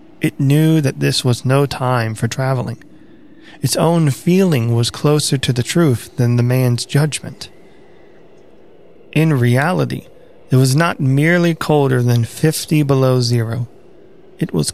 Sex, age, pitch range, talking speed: male, 30-49, 120-150 Hz, 140 wpm